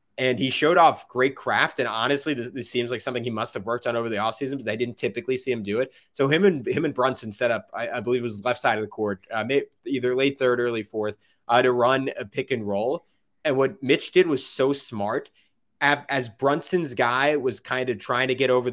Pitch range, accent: 120-140 Hz, American